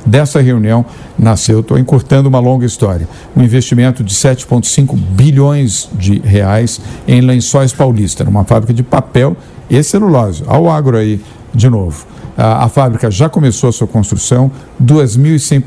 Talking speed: 150 wpm